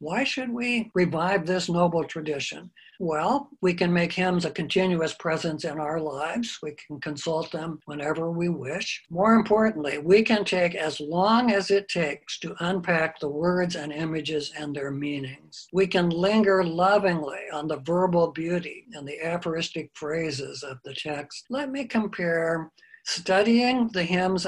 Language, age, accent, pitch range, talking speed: English, 60-79, American, 155-195 Hz, 160 wpm